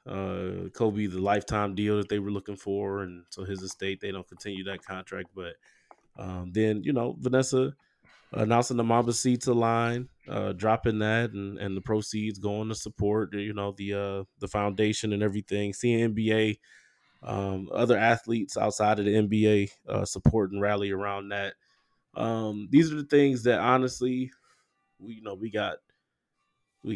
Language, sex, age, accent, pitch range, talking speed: English, male, 20-39, American, 100-115 Hz, 165 wpm